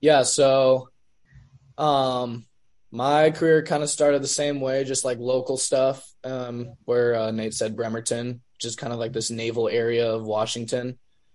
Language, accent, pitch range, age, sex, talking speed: English, American, 115-130 Hz, 20-39, male, 160 wpm